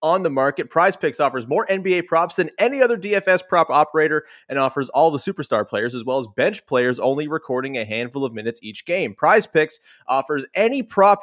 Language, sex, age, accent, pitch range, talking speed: English, male, 30-49, American, 130-175 Hz, 210 wpm